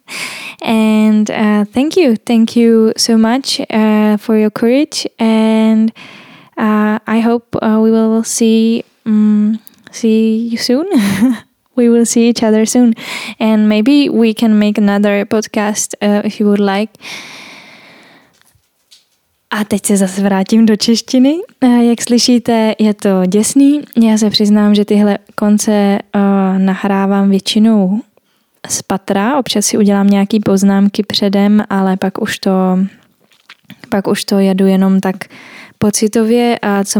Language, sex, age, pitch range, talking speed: Czech, female, 10-29, 200-230 Hz, 135 wpm